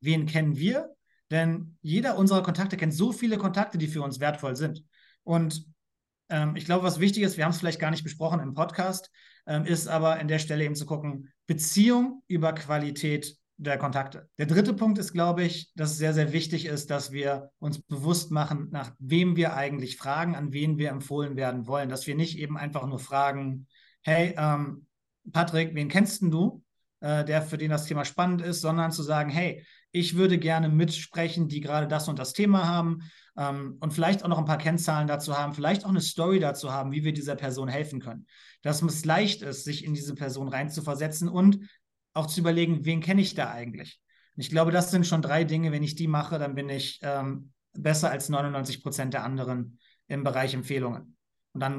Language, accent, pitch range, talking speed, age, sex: German, German, 140-170 Hz, 205 wpm, 30-49, male